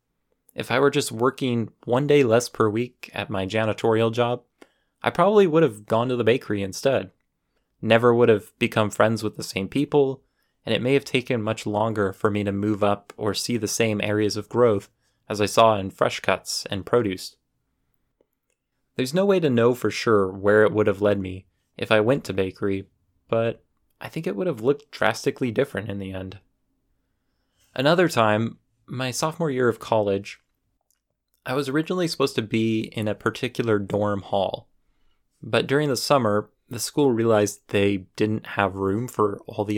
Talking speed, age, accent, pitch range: 185 wpm, 20-39, American, 100-130 Hz